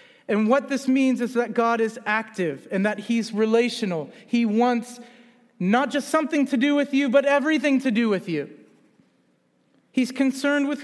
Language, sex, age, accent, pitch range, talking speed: English, male, 40-59, American, 215-275 Hz, 170 wpm